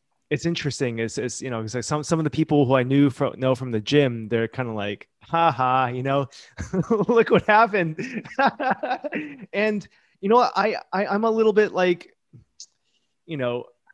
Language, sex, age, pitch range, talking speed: English, male, 20-39, 120-160 Hz, 190 wpm